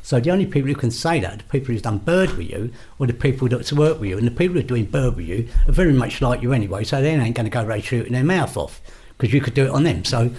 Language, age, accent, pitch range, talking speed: English, 60-79, British, 115-160 Hz, 325 wpm